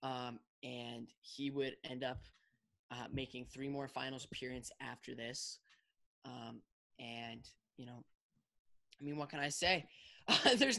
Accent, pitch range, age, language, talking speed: American, 130-170 Hz, 10-29, English, 140 wpm